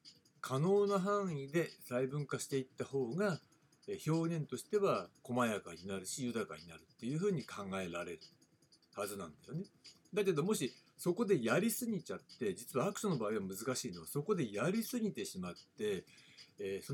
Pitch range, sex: 110-185 Hz, male